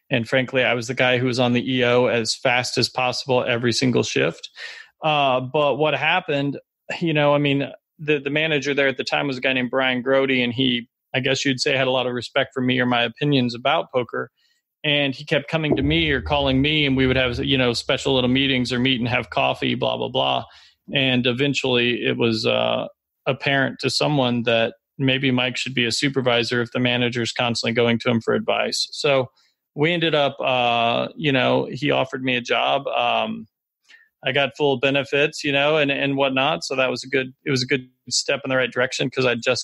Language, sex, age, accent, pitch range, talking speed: English, male, 30-49, American, 125-140 Hz, 220 wpm